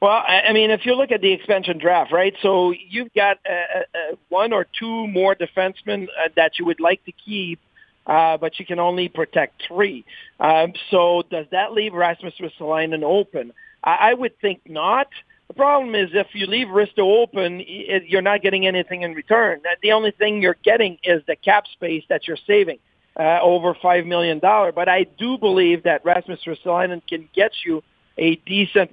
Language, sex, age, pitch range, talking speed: English, male, 50-69, 175-210 Hz, 185 wpm